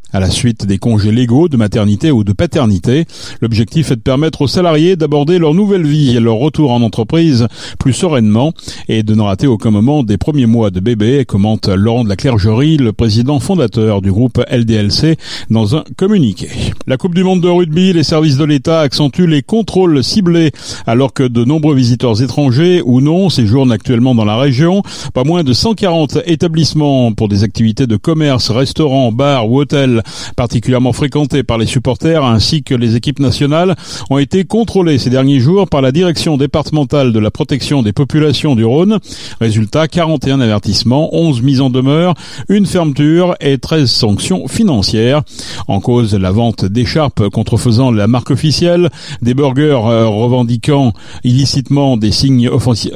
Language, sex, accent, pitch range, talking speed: French, male, French, 115-155 Hz, 170 wpm